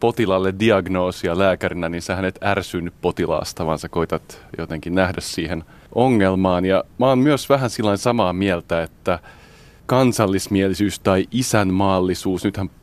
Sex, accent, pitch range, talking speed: male, native, 85-100 Hz, 130 wpm